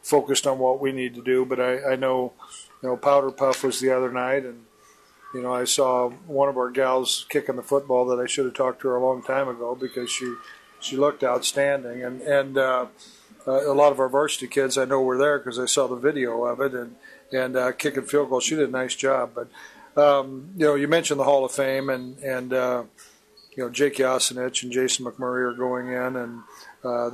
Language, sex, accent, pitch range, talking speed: English, male, American, 125-135 Hz, 230 wpm